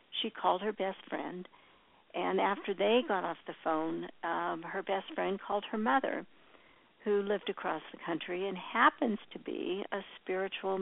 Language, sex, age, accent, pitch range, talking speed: English, female, 60-79, American, 175-215 Hz, 165 wpm